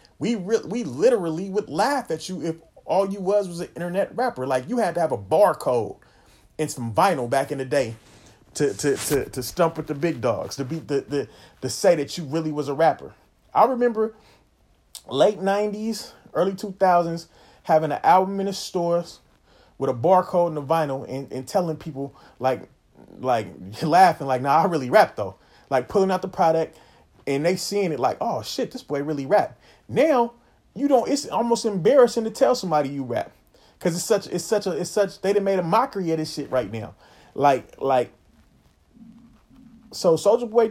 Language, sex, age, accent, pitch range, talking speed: English, male, 30-49, American, 145-200 Hz, 200 wpm